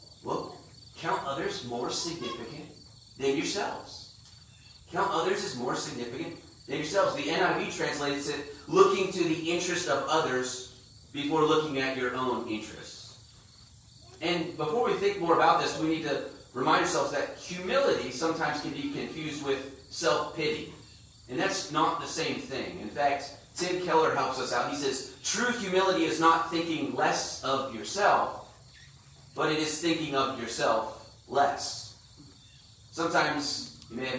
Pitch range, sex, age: 125-165 Hz, male, 30-49